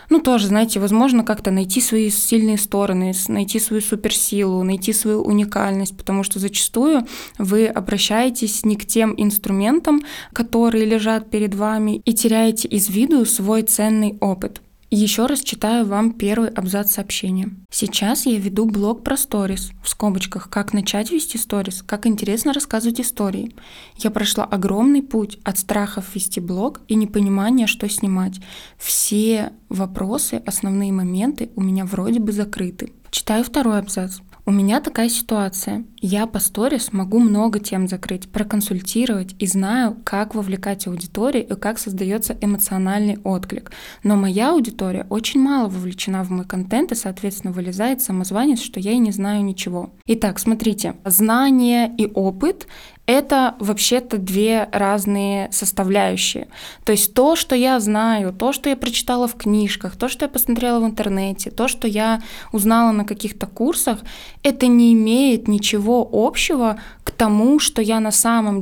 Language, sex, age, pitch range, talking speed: Russian, female, 20-39, 200-235 Hz, 150 wpm